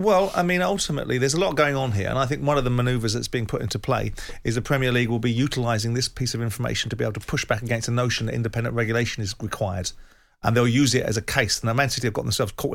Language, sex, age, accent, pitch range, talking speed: English, male, 40-59, British, 115-140 Hz, 285 wpm